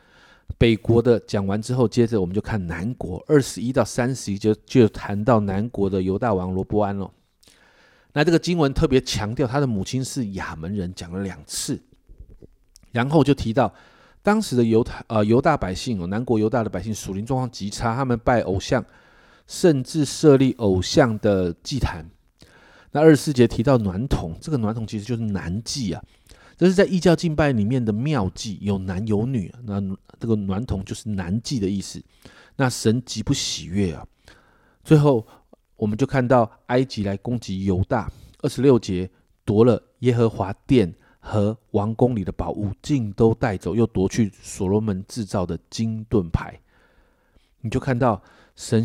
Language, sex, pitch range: Chinese, male, 100-130 Hz